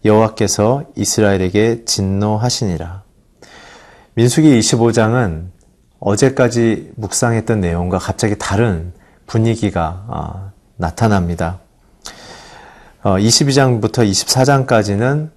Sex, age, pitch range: male, 40-59, 95-120 Hz